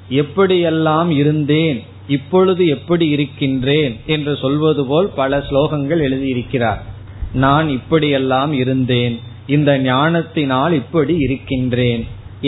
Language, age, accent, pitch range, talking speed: Tamil, 20-39, native, 120-155 Hz, 90 wpm